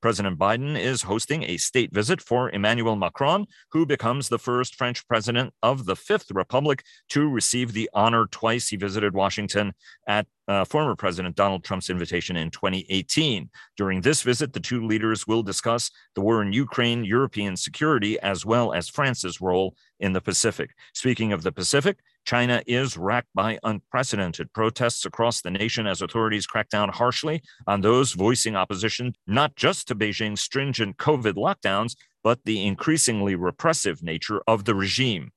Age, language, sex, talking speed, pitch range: 40-59, English, male, 165 wpm, 95-125 Hz